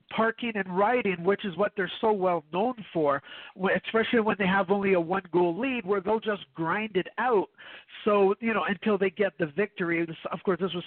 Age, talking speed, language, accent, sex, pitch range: 50-69, 205 wpm, English, American, male, 195-230 Hz